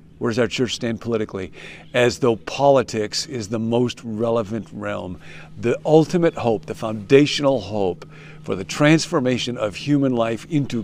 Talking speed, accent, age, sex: 150 wpm, American, 50-69, male